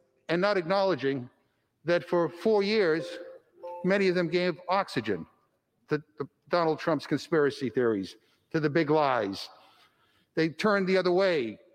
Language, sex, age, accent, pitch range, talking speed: English, male, 60-79, American, 140-185 Hz, 140 wpm